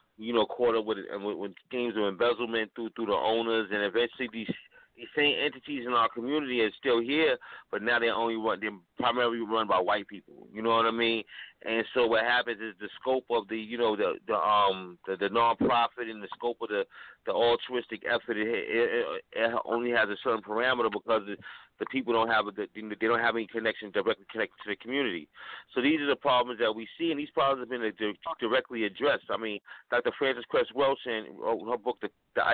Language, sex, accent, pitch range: English, male, American, 110-130 Hz